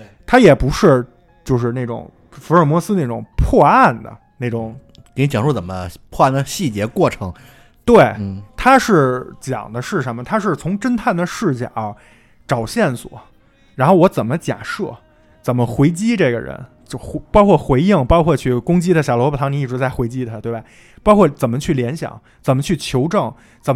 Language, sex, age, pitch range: Chinese, male, 20-39, 120-175 Hz